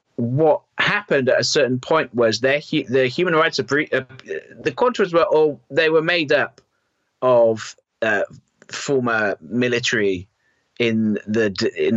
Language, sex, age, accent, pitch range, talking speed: English, male, 30-49, British, 105-135 Hz, 135 wpm